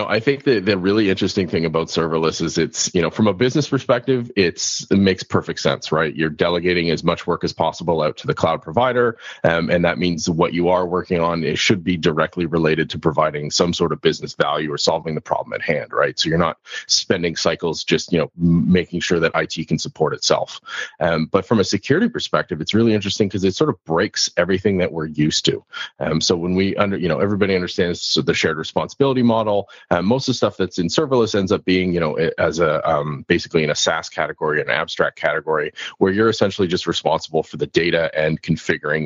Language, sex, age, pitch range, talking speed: English, male, 30-49, 80-105 Hz, 220 wpm